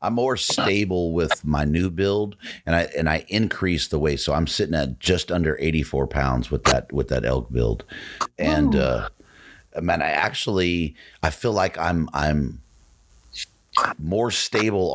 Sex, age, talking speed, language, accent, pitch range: male, 30-49, 165 wpm, English, American, 65-85 Hz